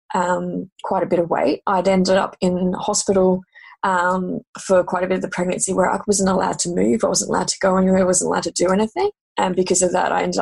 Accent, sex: Australian, female